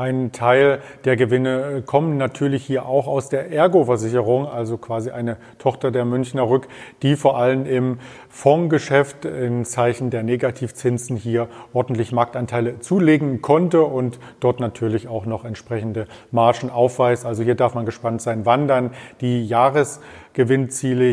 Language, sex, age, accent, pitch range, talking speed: German, male, 40-59, German, 120-145 Hz, 145 wpm